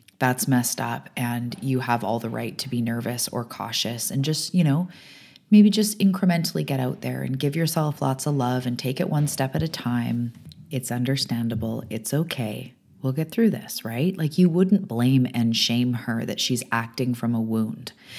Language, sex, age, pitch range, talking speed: English, female, 30-49, 115-135 Hz, 200 wpm